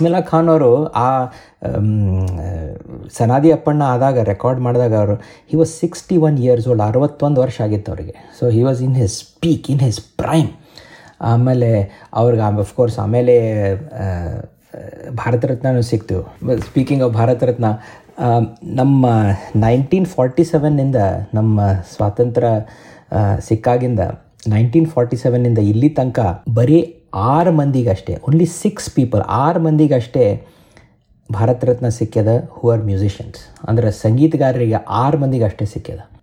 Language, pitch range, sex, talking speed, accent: Kannada, 110-135 Hz, male, 115 wpm, native